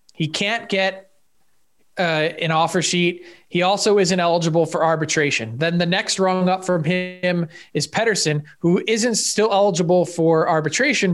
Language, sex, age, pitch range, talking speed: English, male, 20-39, 165-195 Hz, 150 wpm